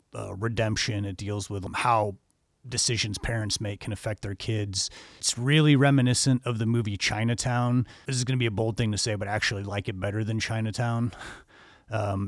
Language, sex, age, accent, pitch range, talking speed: English, male, 30-49, American, 105-120 Hz, 195 wpm